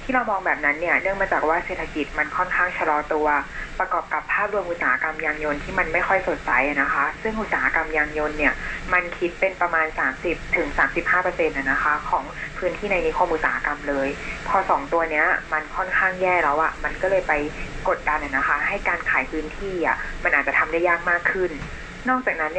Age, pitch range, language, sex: 20-39, 155-185 Hz, Thai, female